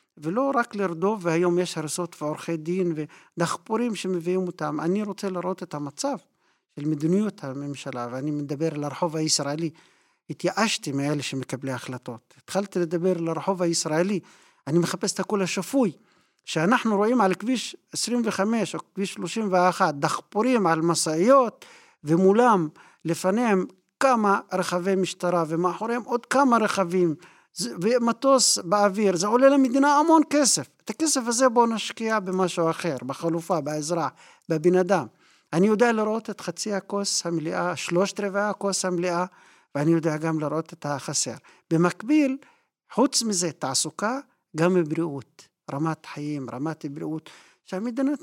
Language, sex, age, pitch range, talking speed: Hebrew, male, 50-69, 160-210 Hz, 130 wpm